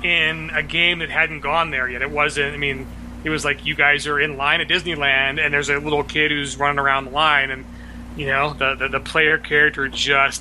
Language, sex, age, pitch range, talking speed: English, male, 30-49, 130-155 Hz, 235 wpm